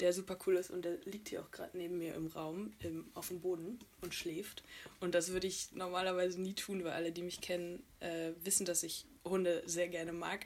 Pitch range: 175-210 Hz